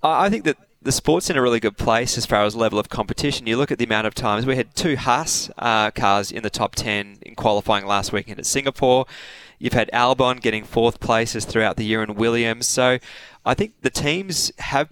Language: English